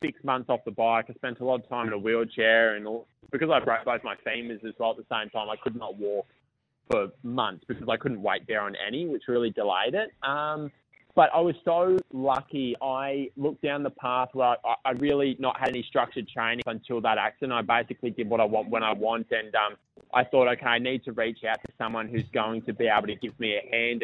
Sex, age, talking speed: male, 20-39, 245 wpm